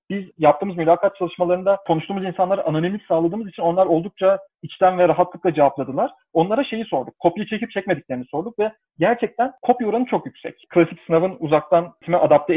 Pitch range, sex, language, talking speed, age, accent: 155-220 Hz, male, Turkish, 160 wpm, 40-59, native